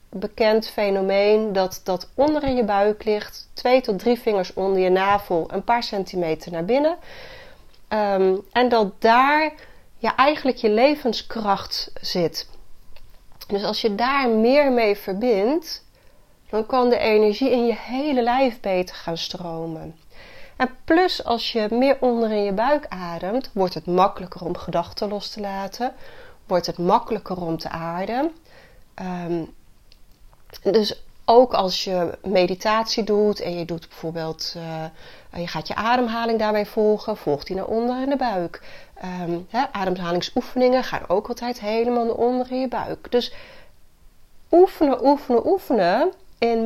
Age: 30-49